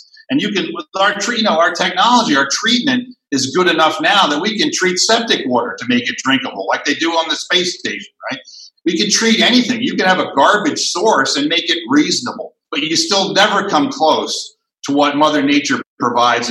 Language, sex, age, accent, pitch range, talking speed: English, male, 50-69, American, 155-245 Hz, 205 wpm